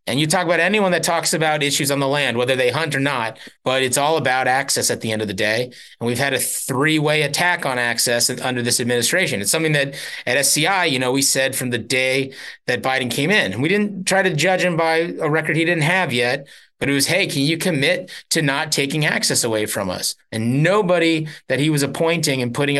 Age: 30-49